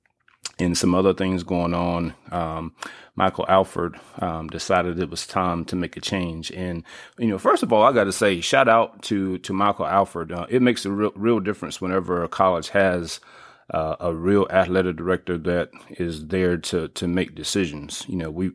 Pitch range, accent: 85-100 Hz, American